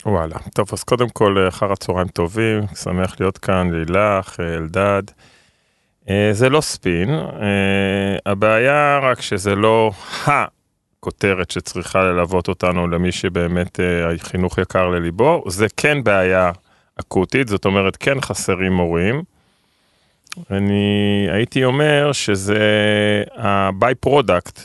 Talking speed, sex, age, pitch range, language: 105 wpm, male, 30-49, 95-110 Hz, Hebrew